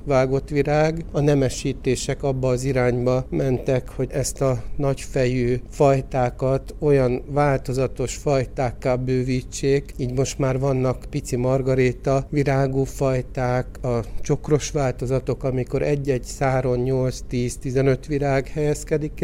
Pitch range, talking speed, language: 125-140 Hz, 110 wpm, Hungarian